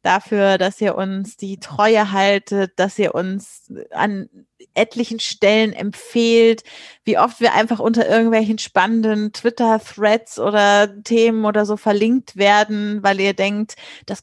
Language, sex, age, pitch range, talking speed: German, female, 30-49, 195-230 Hz, 135 wpm